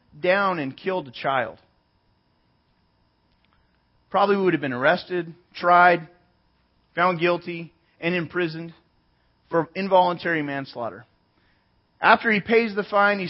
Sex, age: male, 30-49